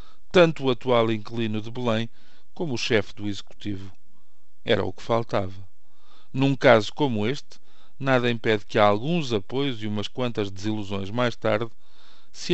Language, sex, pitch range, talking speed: Portuguese, male, 105-135 Hz, 155 wpm